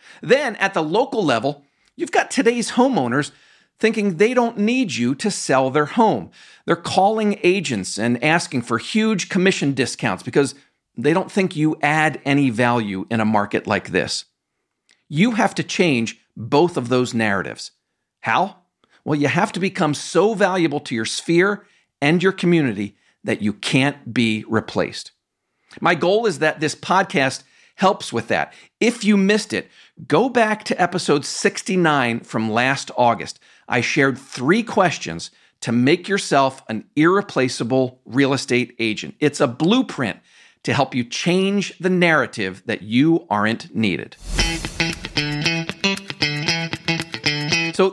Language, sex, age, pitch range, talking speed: English, male, 50-69, 125-195 Hz, 145 wpm